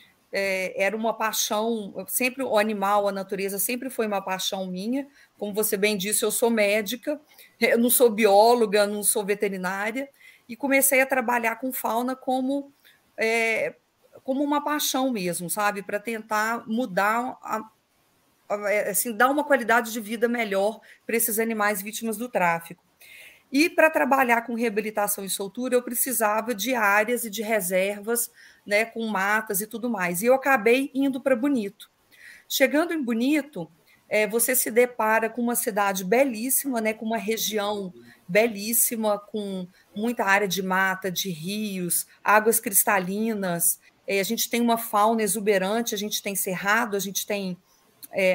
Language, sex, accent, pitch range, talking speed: Portuguese, female, Brazilian, 200-245 Hz, 150 wpm